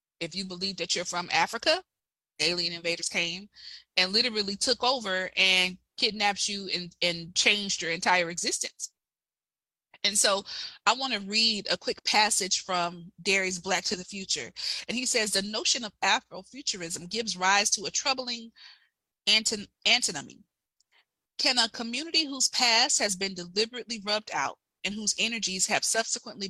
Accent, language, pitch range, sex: American, English, 185-230 Hz, female